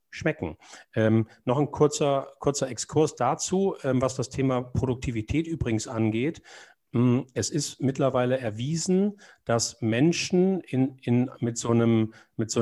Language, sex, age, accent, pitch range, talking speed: German, male, 40-59, German, 115-140 Hz, 115 wpm